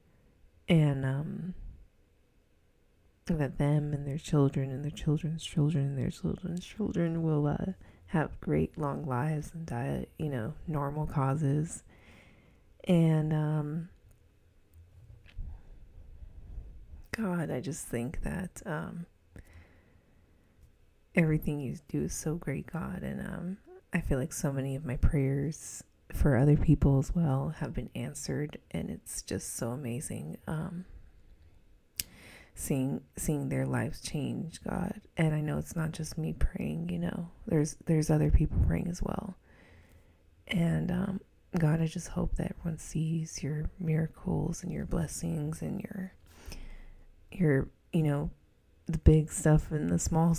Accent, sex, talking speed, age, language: American, female, 135 wpm, 20-39, English